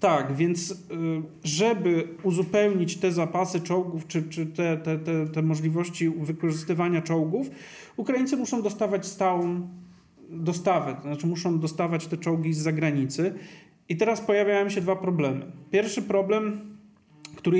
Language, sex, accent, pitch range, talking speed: Polish, male, native, 160-185 Hz, 130 wpm